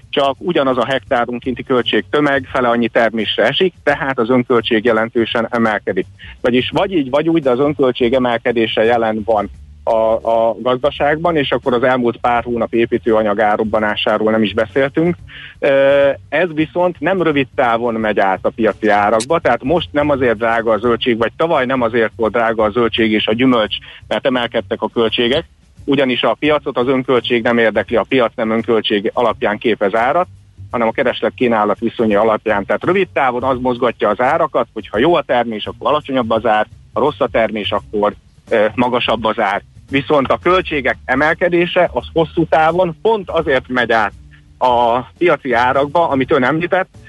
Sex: male